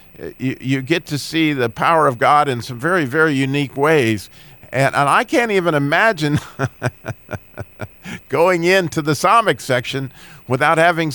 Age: 50-69